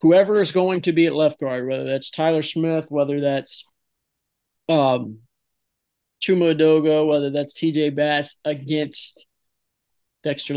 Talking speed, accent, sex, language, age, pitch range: 130 wpm, American, male, English, 20-39, 140-155 Hz